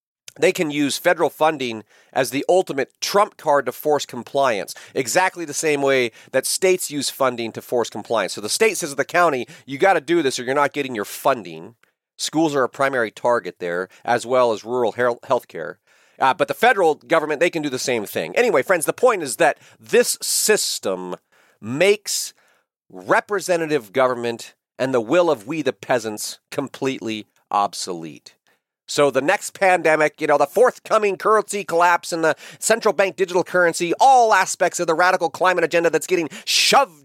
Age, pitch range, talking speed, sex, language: 40-59, 135-190 Hz, 180 wpm, male, English